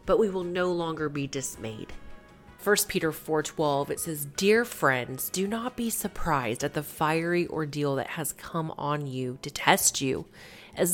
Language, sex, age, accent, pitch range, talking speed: English, female, 30-49, American, 145-190 Hz, 170 wpm